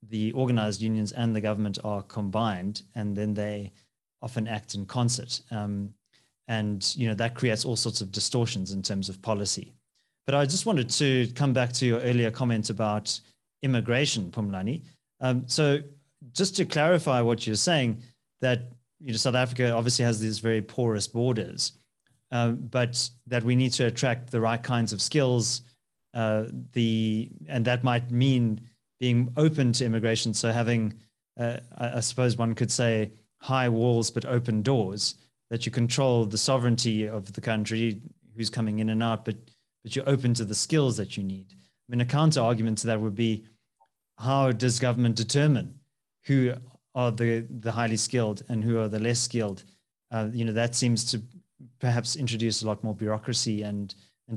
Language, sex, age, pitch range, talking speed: English, male, 30-49, 110-125 Hz, 175 wpm